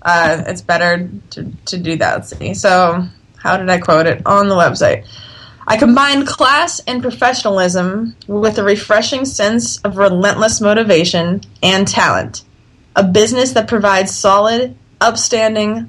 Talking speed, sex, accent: 145 wpm, female, American